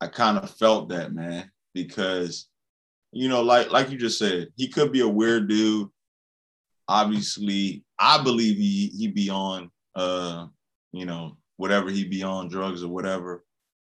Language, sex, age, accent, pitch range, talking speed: English, male, 20-39, American, 95-120 Hz, 160 wpm